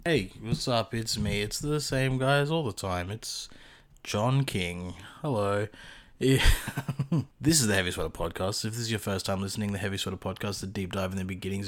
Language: English